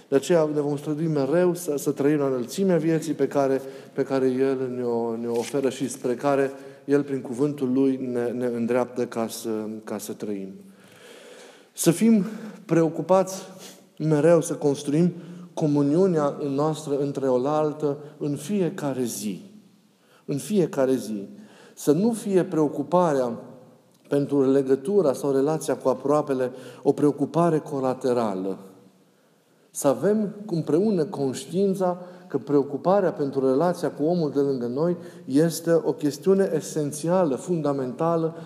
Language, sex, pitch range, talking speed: Romanian, male, 135-170 Hz, 130 wpm